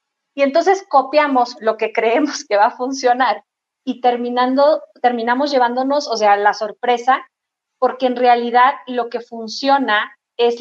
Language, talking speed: Spanish, 140 wpm